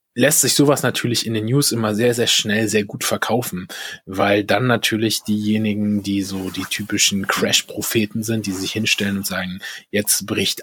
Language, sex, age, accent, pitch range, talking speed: German, male, 20-39, German, 105-135 Hz, 175 wpm